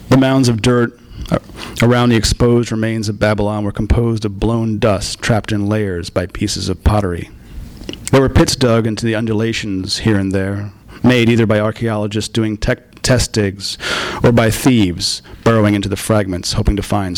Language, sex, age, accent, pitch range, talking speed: English, male, 40-59, American, 100-120 Hz, 170 wpm